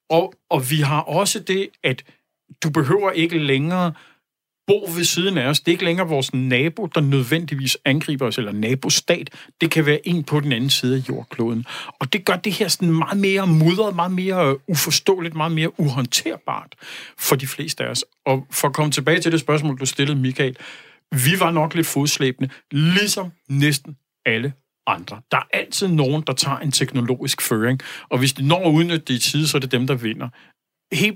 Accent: native